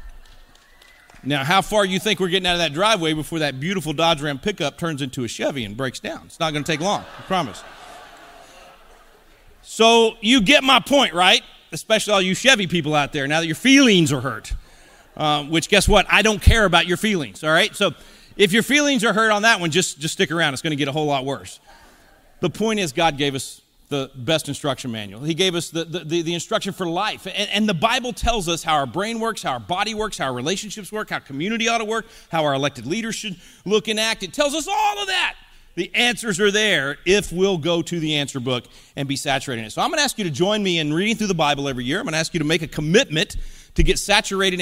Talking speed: 245 wpm